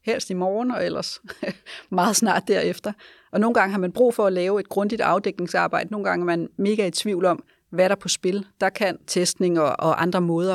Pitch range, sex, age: 170-195 Hz, female, 30-49